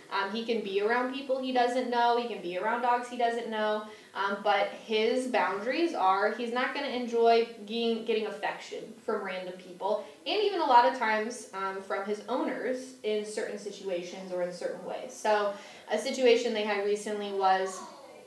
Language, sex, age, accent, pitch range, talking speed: English, female, 10-29, American, 200-240 Hz, 185 wpm